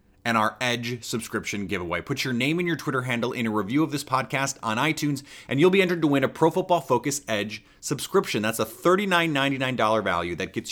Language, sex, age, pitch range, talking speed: English, male, 30-49, 110-145 Hz, 215 wpm